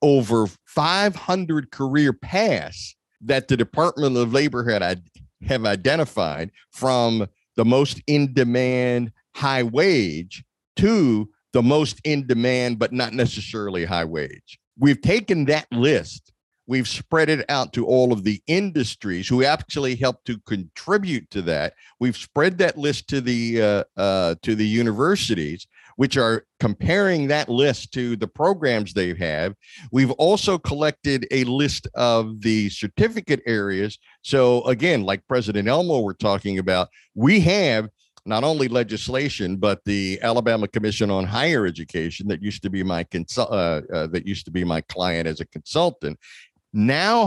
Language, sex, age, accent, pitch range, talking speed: English, male, 50-69, American, 105-140 Hz, 145 wpm